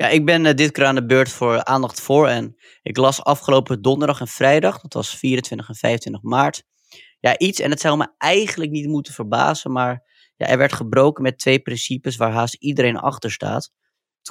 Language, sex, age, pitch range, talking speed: Dutch, male, 20-39, 115-140 Hz, 200 wpm